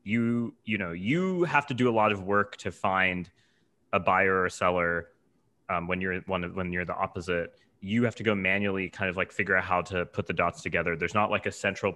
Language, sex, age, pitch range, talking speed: English, male, 30-49, 95-125 Hz, 240 wpm